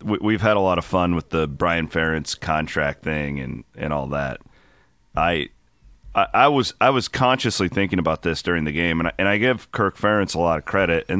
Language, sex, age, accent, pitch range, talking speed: English, male, 30-49, American, 80-110 Hz, 220 wpm